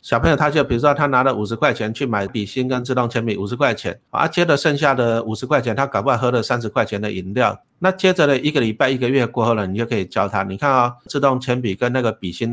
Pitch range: 105-135 Hz